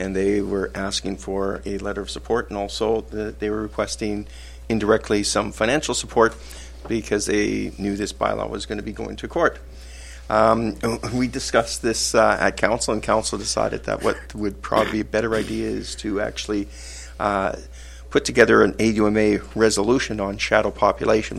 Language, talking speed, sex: English, 170 wpm, male